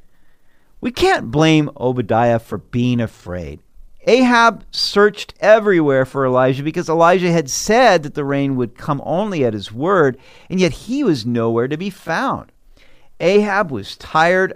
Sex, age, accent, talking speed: male, 50-69, American, 150 wpm